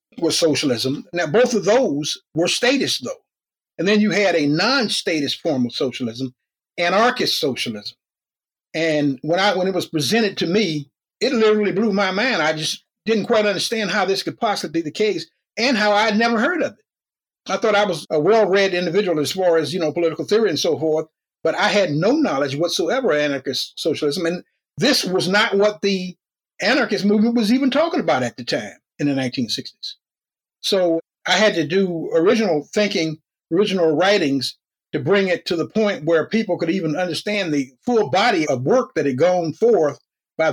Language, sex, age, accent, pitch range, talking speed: English, male, 50-69, American, 155-210 Hz, 190 wpm